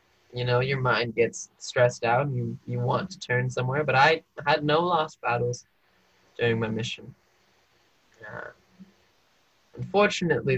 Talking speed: 140 wpm